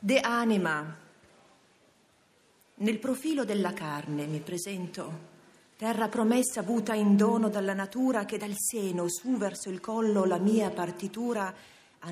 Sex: female